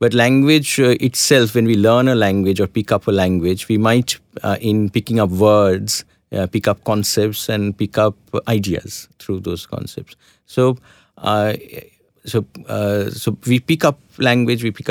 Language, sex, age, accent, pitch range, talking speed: English, male, 50-69, Indian, 100-125 Hz, 170 wpm